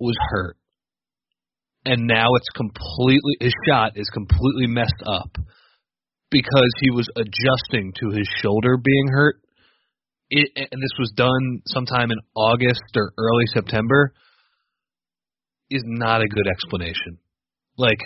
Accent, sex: American, male